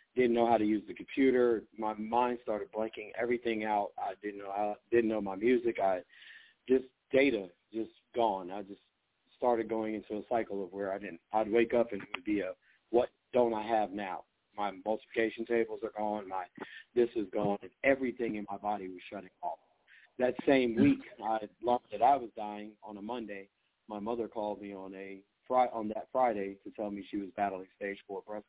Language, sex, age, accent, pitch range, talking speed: English, male, 40-59, American, 105-125 Hz, 205 wpm